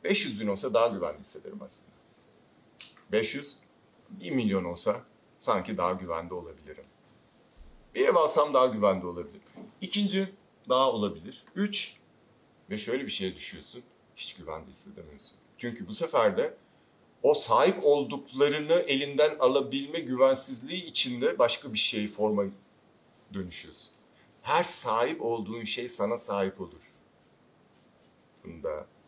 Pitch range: 95-150 Hz